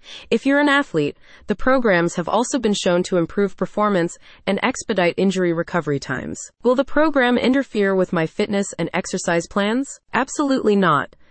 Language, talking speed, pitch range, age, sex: English, 160 wpm, 170-235 Hz, 30-49, female